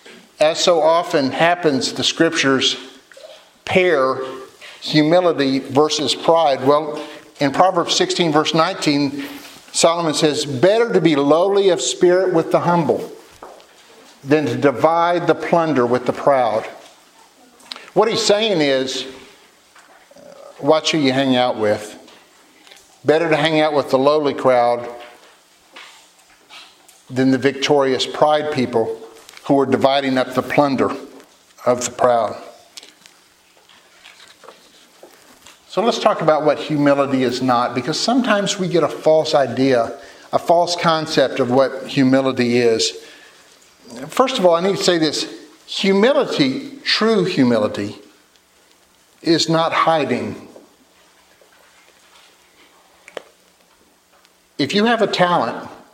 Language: English